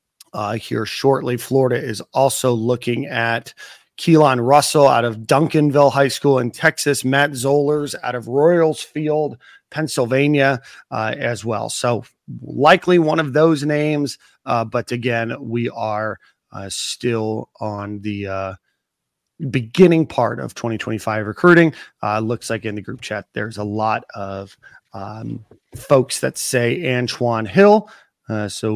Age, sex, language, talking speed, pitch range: 30-49, male, English, 140 wpm, 115-145 Hz